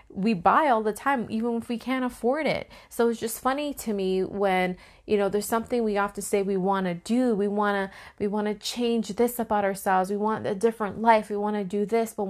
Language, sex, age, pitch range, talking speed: English, female, 20-39, 180-220 Hz, 240 wpm